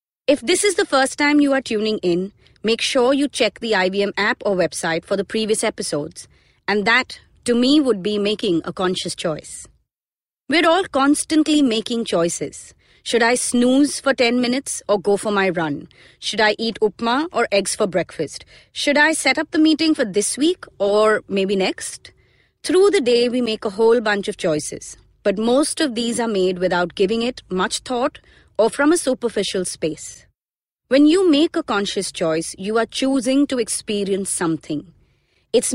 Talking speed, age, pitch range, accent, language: 180 wpm, 30-49, 190-270 Hz, Indian, English